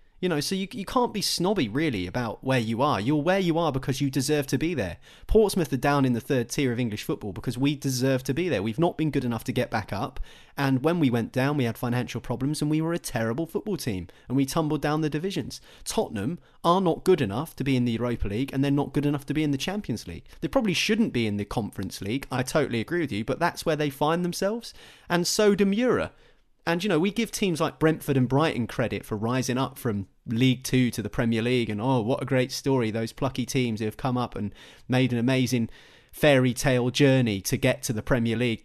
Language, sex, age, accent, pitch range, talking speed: English, male, 30-49, British, 125-165 Hz, 250 wpm